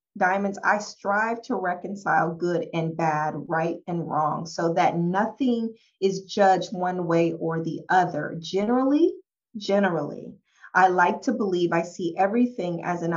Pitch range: 165-205 Hz